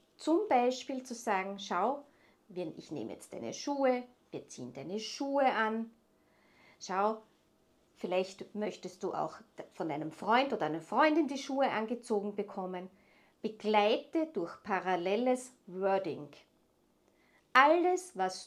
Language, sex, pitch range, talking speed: German, female, 195-265 Hz, 115 wpm